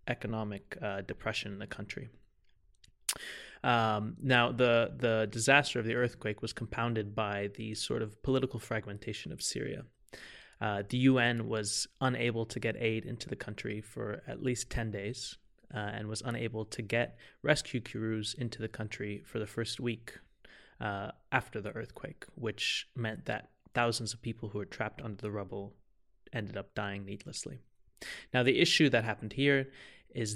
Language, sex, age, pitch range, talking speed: English, male, 20-39, 105-120 Hz, 160 wpm